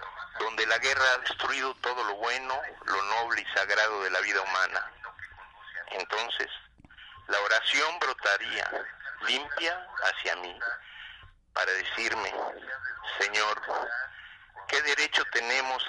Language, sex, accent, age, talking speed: Spanish, male, Mexican, 50-69, 110 wpm